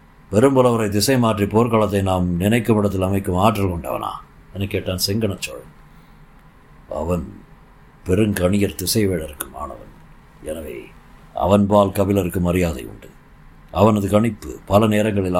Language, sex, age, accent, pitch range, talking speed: Tamil, male, 50-69, native, 85-105 Hz, 100 wpm